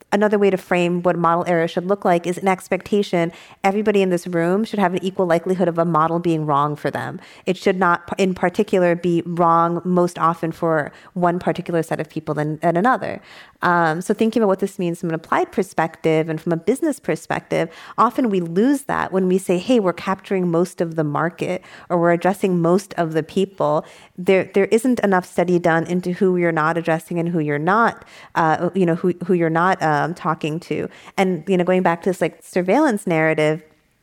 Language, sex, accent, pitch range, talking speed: English, female, American, 165-190 Hz, 215 wpm